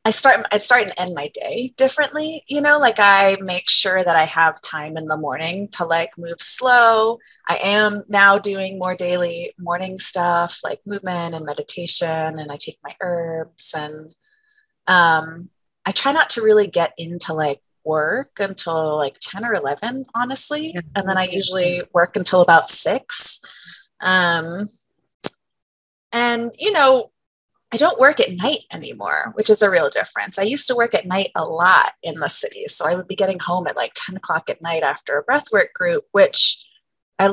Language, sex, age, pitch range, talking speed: English, female, 20-39, 165-225 Hz, 180 wpm